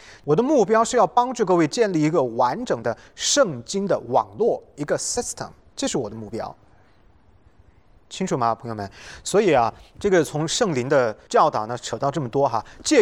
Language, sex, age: English, male, 30-49